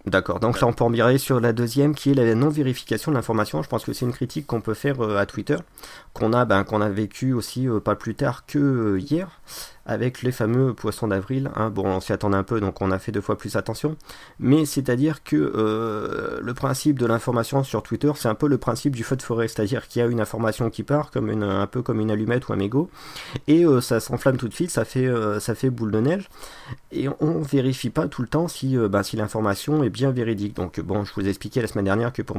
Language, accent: French, French